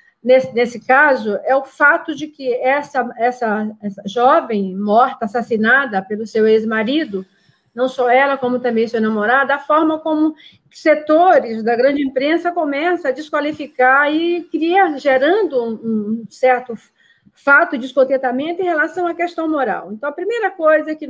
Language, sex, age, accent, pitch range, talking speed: Portuguese, female, 40-59, Brazilian, 245-320 Hz, 150 wpm